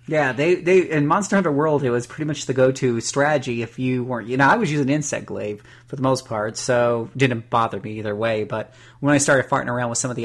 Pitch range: 115-140 Hz